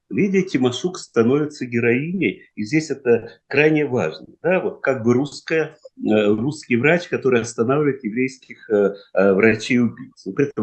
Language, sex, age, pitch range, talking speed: Russian, male, 50-69, 115-175 Hz, 130 wpm